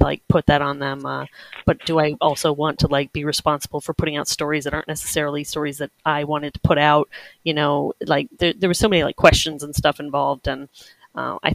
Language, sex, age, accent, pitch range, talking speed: English, female, 30-49, American, 145-160 Hz, 235 wpm